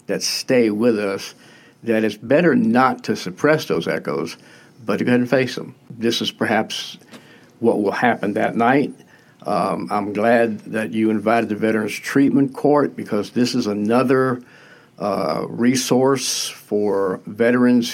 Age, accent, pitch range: 60-79, American, 110-125 Hz